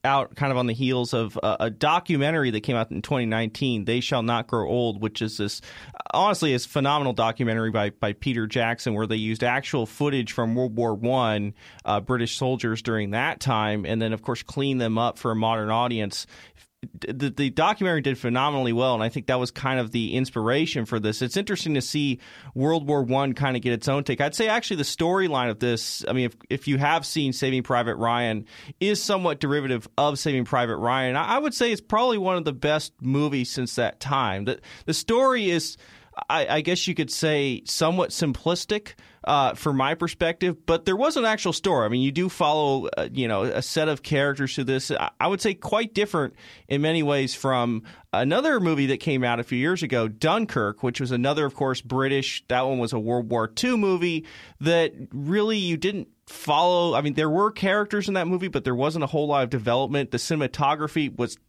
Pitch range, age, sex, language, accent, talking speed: 120-160 Hz, 30-49, male, English, American, 215 wpm